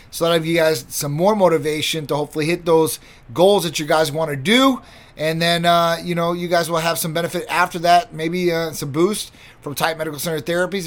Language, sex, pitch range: English, male, 150-175 Hz